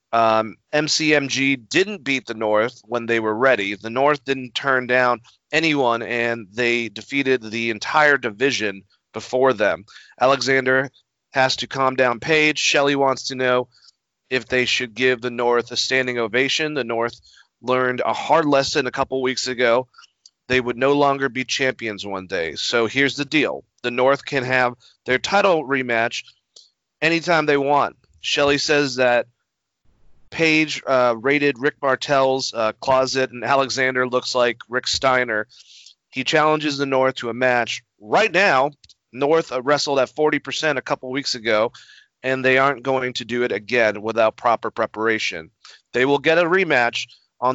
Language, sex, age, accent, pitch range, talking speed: English, male, 30-49, American, 120-140 Hz, 160 wpm